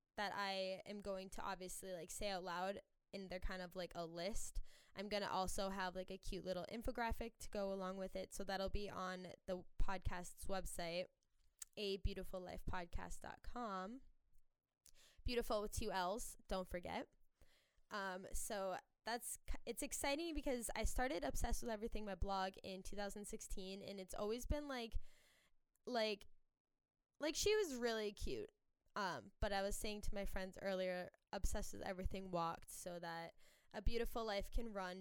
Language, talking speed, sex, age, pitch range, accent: English, 160 wpm, female, 10-29, 185-220 Hz, American